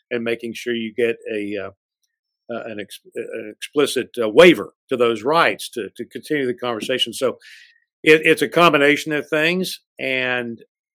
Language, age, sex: English, 50-69, male